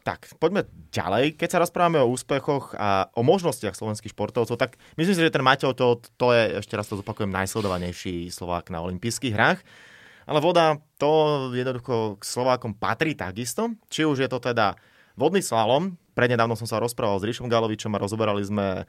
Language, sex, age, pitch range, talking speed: Slovak, male, 30-49, 105-130 Hz, 180 wpm